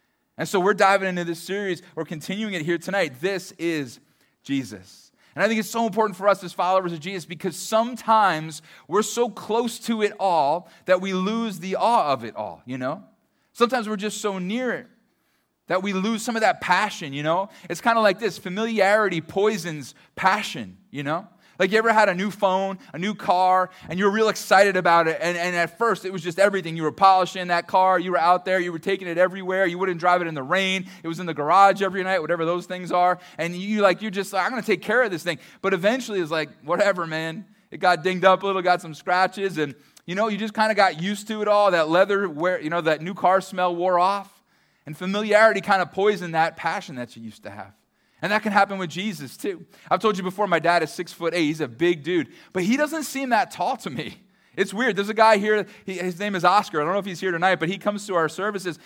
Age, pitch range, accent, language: 20-39, 170-210 Hz, American, English